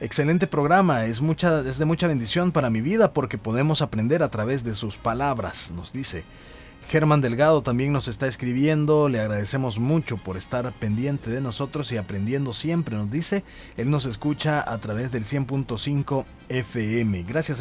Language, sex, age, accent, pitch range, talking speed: Spanish, male, 30-49, Mexican, 110-150 Hz, 165 wpm